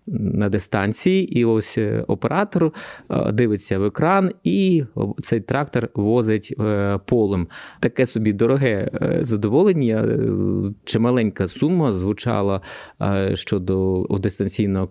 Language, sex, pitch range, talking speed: Ukrainian, male, 100-120 Hz, 95 wpm